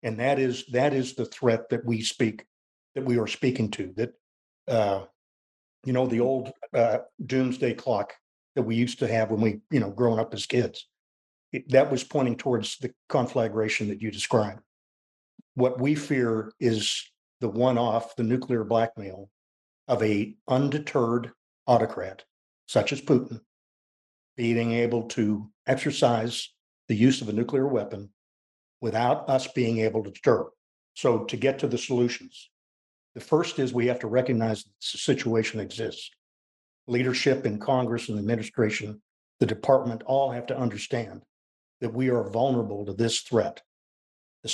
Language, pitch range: English, 105-130 Hz